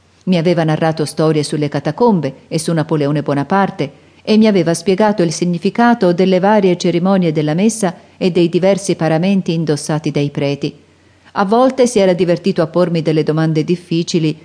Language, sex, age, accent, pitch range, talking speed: Italian, female, 40-59, native, 155-185 Hz, 160 wpm